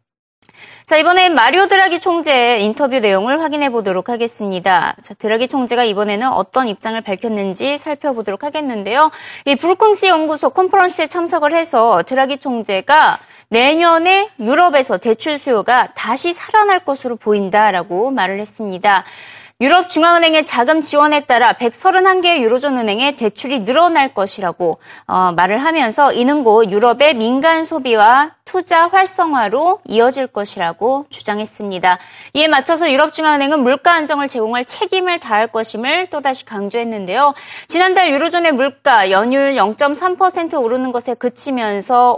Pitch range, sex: 220-325 Hz, female